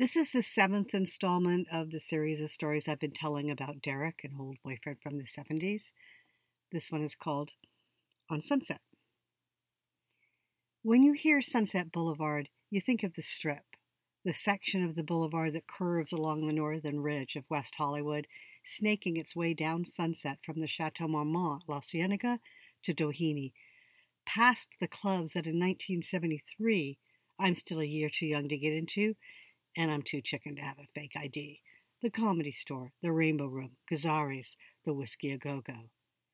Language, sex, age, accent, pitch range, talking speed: English, female, 50-69, American, 150-175 Hz, 160 wpm